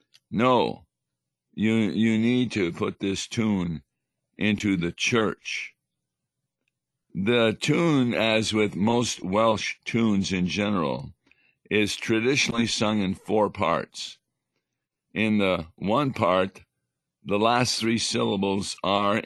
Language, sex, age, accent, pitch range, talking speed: English, male, 50-69, American, 95-110 Hz, 110 wpm